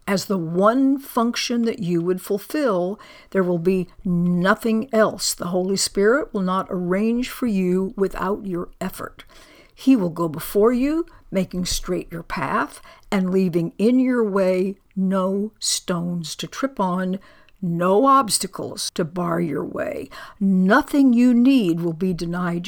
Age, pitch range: 60-79, 180-225 Hz